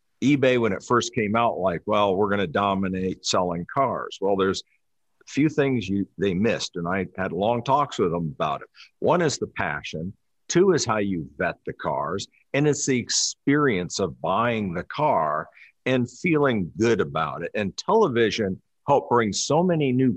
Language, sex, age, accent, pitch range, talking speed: English, male, 50-69, American, 100-130 Hz, 185 wpm